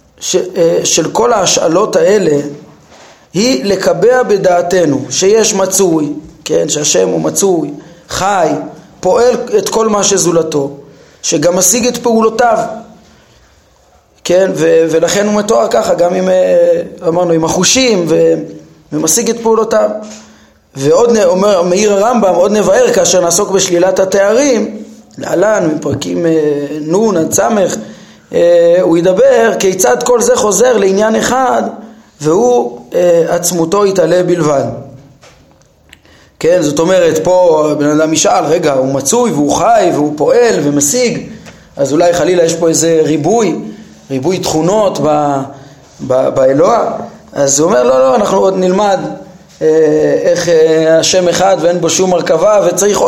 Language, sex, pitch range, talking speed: Hebrew, male, 160-225 Hz, 125 wpm